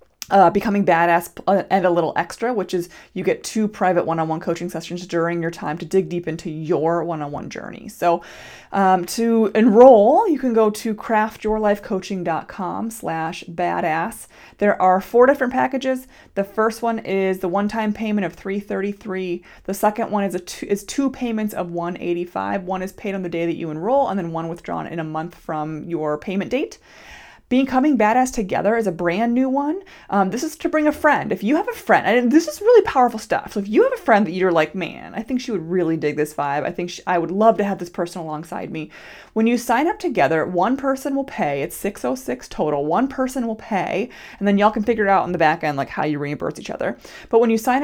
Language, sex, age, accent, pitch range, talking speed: English, female, 30-49, American, 170-225 Hz, 220 wpm